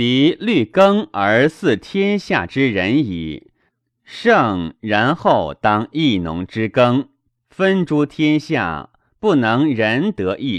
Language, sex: Chinese, male